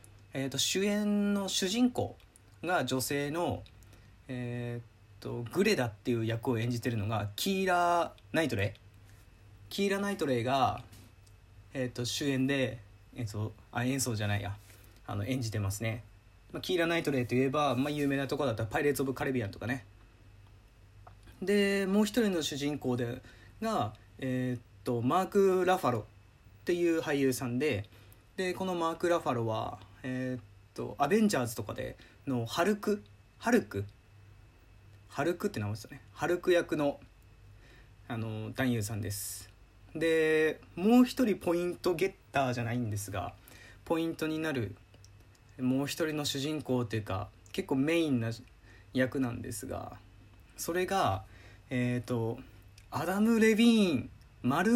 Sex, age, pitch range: male, 20-39, 105-160 Hz